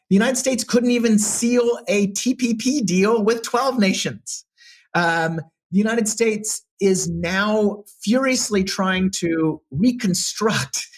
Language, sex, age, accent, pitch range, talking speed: English, male, 30-49, American, 145-200 Hz, 120 wpm